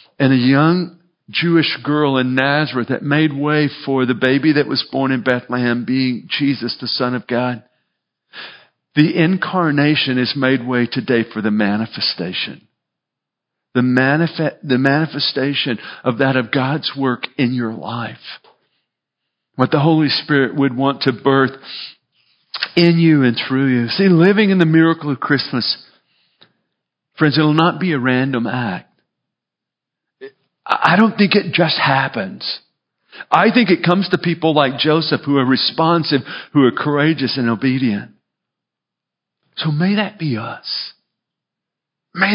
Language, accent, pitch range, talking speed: English, American, 130-180 Hz, 140 wpm